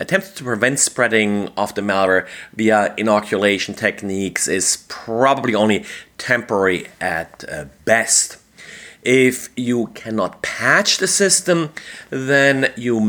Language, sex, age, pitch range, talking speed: English, male, 30-49, 110-140 Hz, 110 wpm